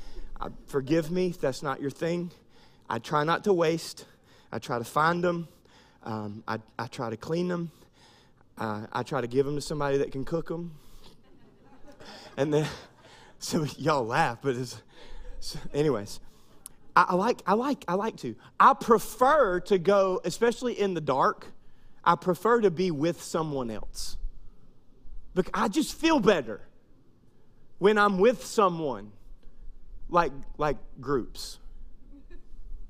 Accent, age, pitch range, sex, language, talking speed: American, 30-49, 150-225 Hz, male, English, 140 wpm